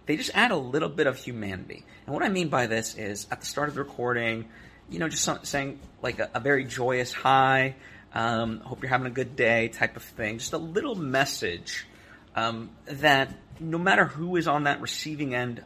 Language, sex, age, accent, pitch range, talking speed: English, male, 30-49, American, 115-150 Hz, 210 wpm